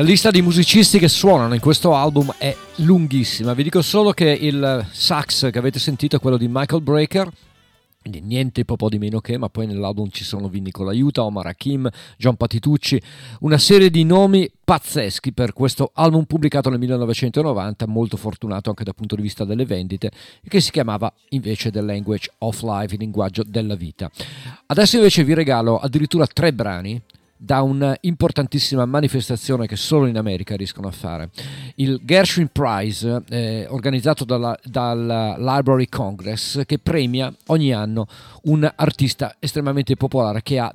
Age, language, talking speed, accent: 40-59, Italian, 160 wpm, native